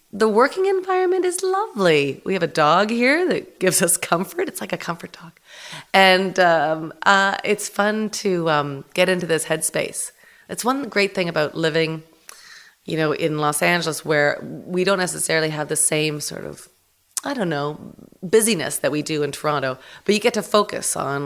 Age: 30-49